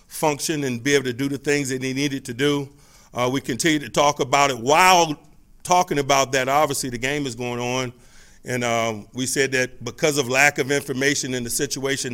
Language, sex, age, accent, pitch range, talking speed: English, male, 40-59, American, 120-140 Hz, 215 wpm